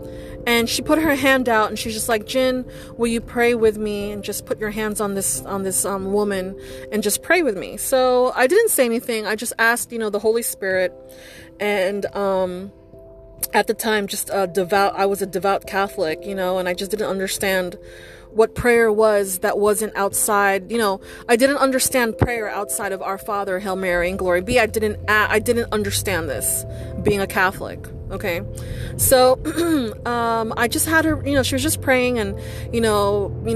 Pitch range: 195-240 Hz